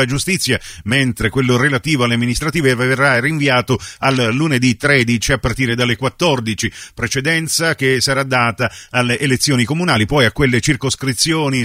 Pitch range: 120-145 Hz